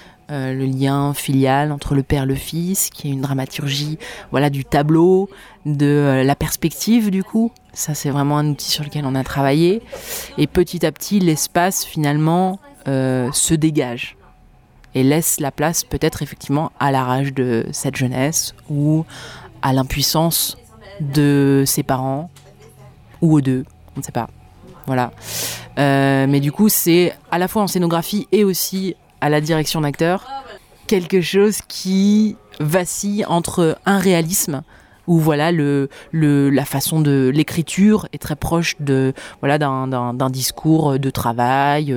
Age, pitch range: 30-49, 135-170 Hz